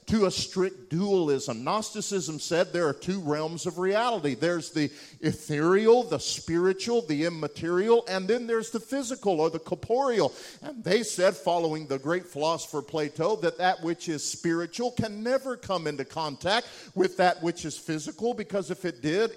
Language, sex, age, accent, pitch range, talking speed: English, male, 50-69, American, 155-200 Hz, 165 wpm